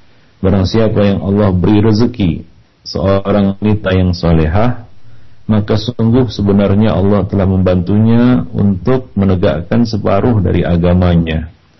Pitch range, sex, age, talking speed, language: 85-110 Hz, male, 50-69, 100 wpm, Malay